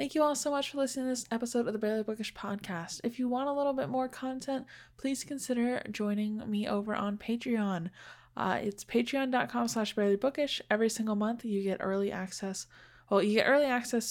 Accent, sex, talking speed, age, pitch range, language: American, female, 205 wpm, 10-29, 175-230 Hz, English